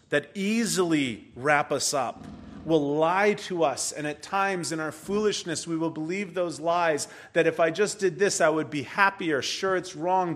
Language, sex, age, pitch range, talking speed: English, male, 40-59, 125-175 Hz, 190 wpm